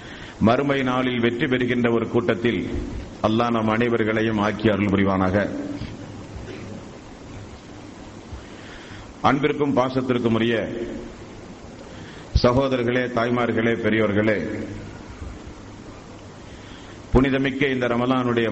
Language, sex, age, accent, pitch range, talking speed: Tamil, male, 50-69, native, 110-130 Hz, 65 wpm